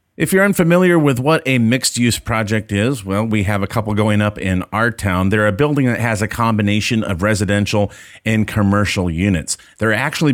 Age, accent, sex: 30-49, American, male